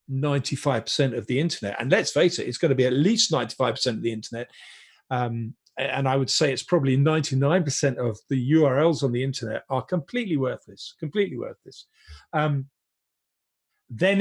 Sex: male